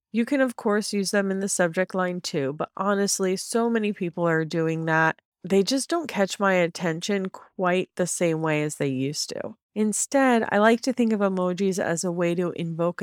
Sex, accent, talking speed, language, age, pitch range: female, American, 205 wpm, English, 30-49, 170-215 Hz